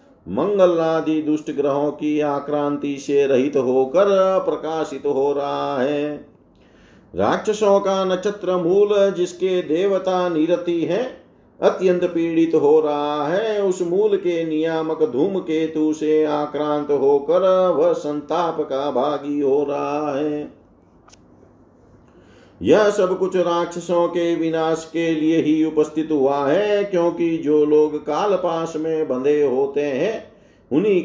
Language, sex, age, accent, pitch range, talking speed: Hindi, male, 50-69, native, 145-175 Hz, 130 wpm